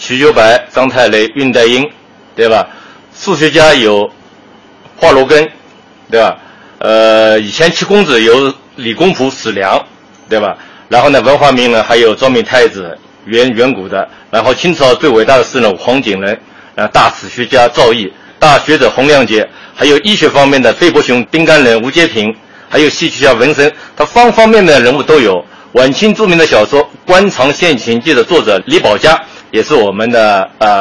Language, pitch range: Chinese, 115-165 Hz